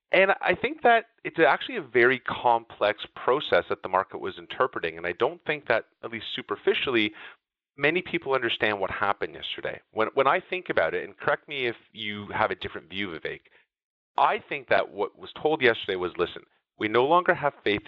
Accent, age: American, 30-49